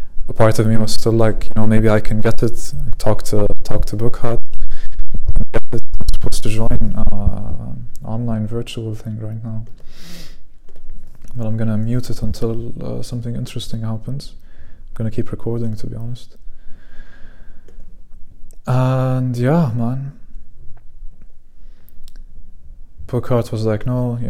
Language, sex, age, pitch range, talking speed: English, male, 20-39, 90-120 Hz, 140 wpm